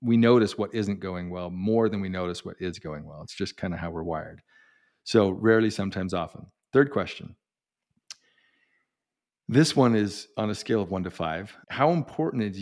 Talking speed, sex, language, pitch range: 190 wpm, male, English, 90-110 Hz